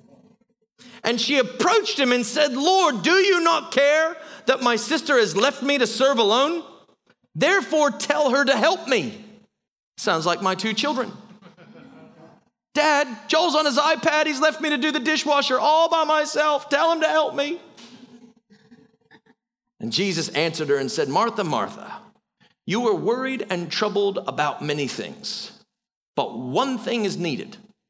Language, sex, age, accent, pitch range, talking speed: English, male, 40-59, American, 190-295 Hz, 155 wpm